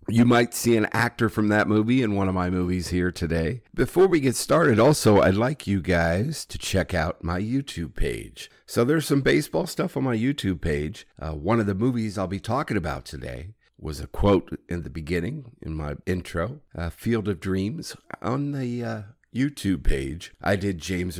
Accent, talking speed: American, 200 wpm